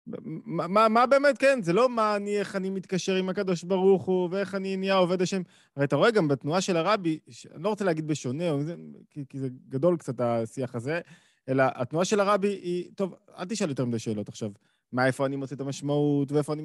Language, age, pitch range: Hebrew, 20-39, 145-195 Hz